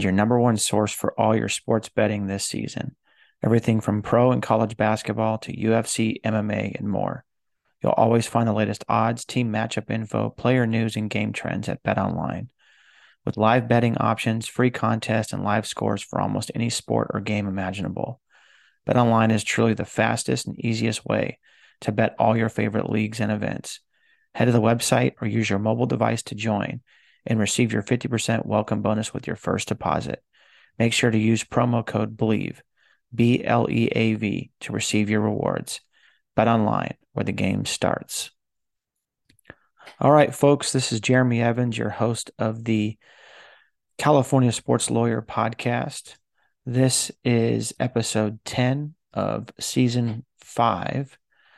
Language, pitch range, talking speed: English, 110-120 Hz, 160 wpm